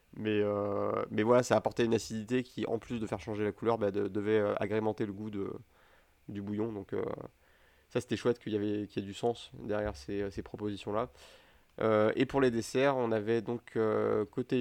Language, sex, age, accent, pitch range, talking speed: French, male, 30-49, French, 100-115 Hz, 220 wpm